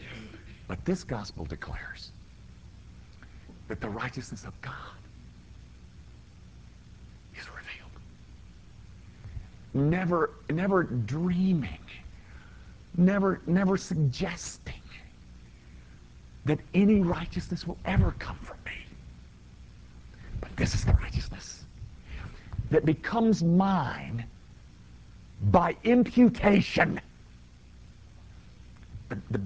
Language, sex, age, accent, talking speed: English, male, 50-69, American, 75 wpm